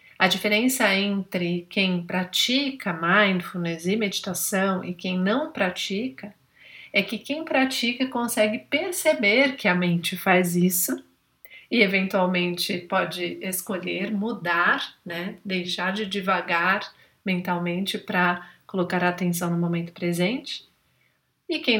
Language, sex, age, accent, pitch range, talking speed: Portuguese, female, 40-59, Brazilian, 180-225 Hz, 115 wpm